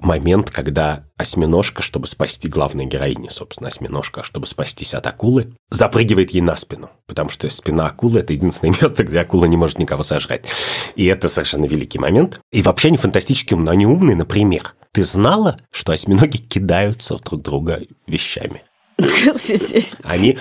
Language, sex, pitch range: Russian, male, 80-115 Hz